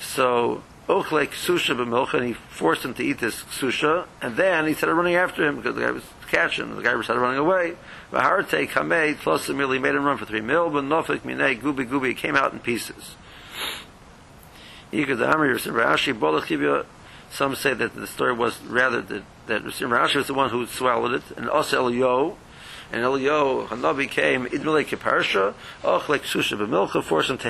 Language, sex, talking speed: English, male, 160 wpm